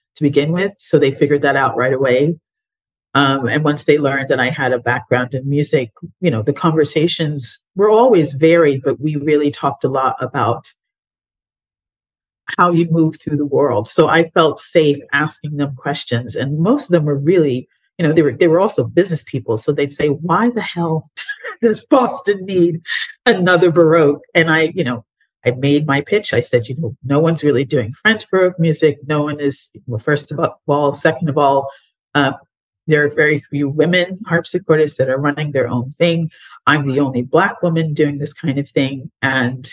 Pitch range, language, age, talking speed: 135-165 Hz, English, 40-59, 190 wpm